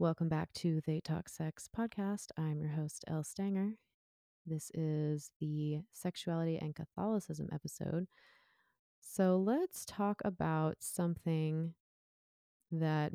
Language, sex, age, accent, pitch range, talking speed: English, female, 30-49, American, 135-160 Hz, 115 wpm